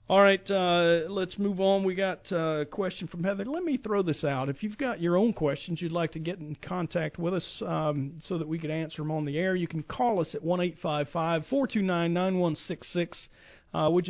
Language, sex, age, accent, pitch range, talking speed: English, male, 40-59, American, 145-185 Hz, 215 wpm